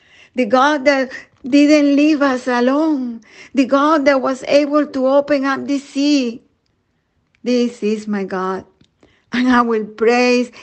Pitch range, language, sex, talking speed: 220-265 Hz, English, female, 140 wpm